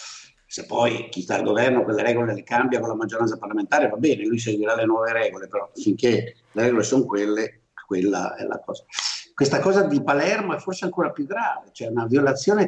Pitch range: 105-155 Hz